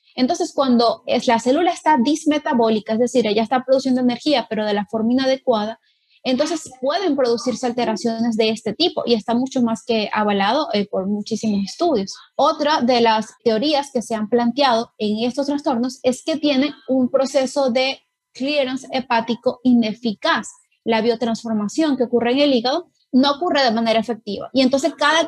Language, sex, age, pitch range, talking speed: Spanish, female, 30-49, 225-280 Hz, 165 wpm